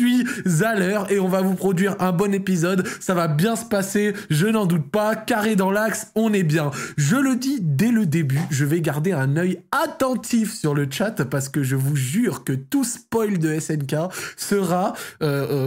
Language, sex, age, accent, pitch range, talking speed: French, male, 20-39, French, 165-230 Hz, 205 wpm